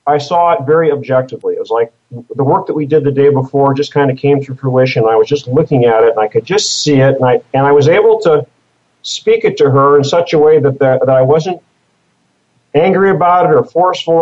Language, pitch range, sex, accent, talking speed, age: English, 130-165 Hz, male, American, 250 wpm, 40-59